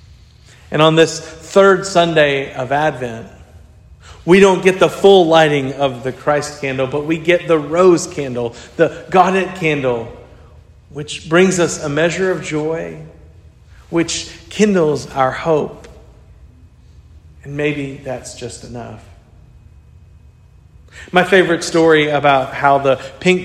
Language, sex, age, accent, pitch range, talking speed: English, male, 40-59, American, 130-170 Hz, 125 wpm